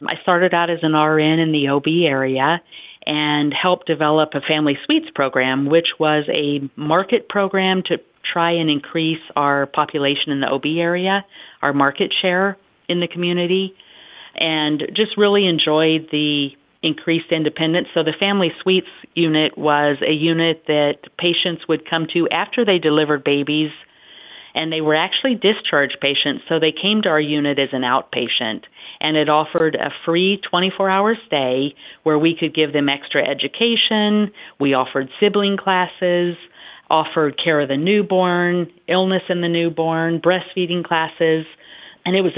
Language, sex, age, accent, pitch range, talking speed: English, female, 40-59, American, 145-175 Hz, 155 wpm